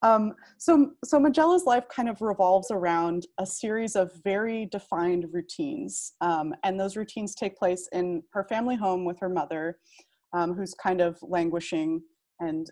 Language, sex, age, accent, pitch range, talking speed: English, female, 20-39, American, 175-220 Hz, 170 wpm